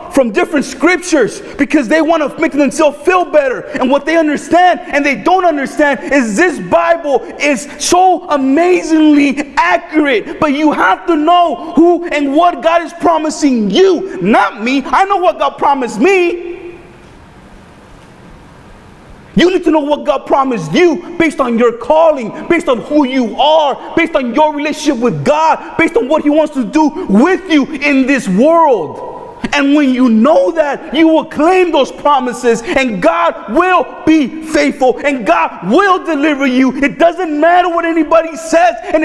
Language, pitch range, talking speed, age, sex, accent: English, 285-345 Hz, 165 wpm, 30-49, male, American